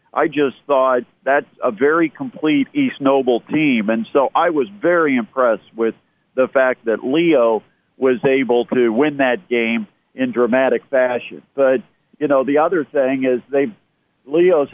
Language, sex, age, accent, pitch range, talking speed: English, male, 50-69, American, 125-160 Hz, 155 wpm